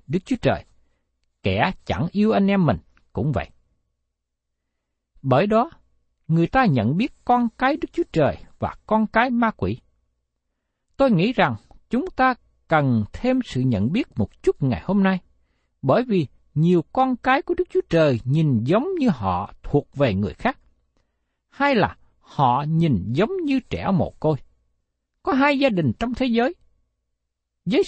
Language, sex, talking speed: Vietnamese, male, 165 wpm